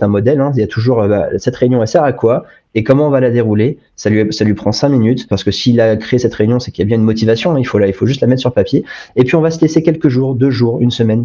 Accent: French